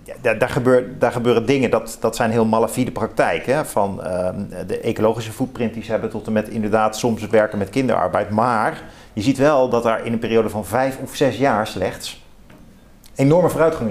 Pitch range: 115-145 Hz